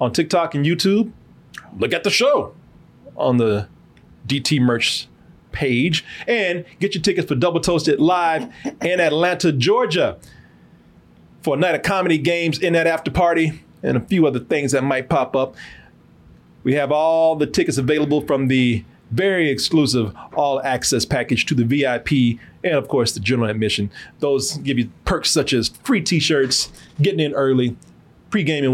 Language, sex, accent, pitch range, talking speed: English, male, American, 115-160 Hz, 160 wpm